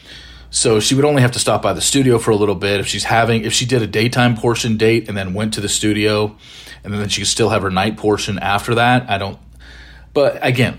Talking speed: 250 wpm